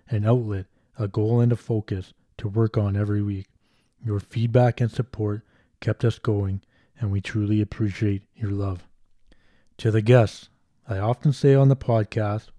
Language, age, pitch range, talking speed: English, 20-39, 100-115 Hz, 160 wpm